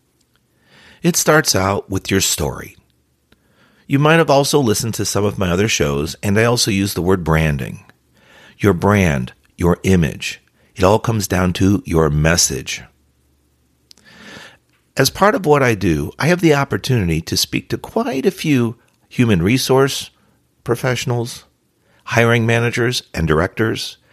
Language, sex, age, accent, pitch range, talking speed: English, male, 50-69, American, 80-120 Hz, 145 wpm